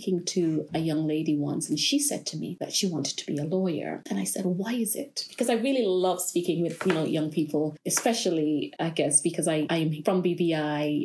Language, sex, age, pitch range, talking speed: English, female, 30-49, 160-235 Hz, 225 wpm